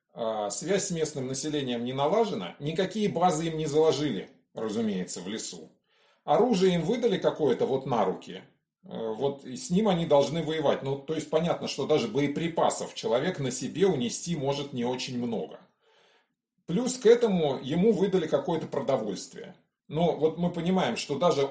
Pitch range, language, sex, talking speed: 140-195 Hz, Russian, male, 155 wpm